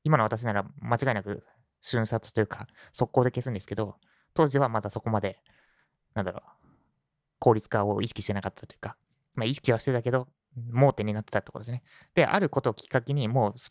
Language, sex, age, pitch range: Japanese, male, 20-39, 105-140 Hz